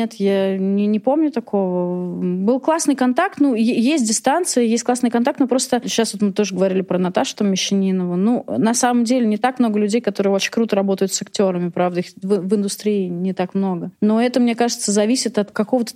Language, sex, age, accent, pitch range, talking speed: Russian, female, 30-49, native, 185-220 Hz, 205 wpm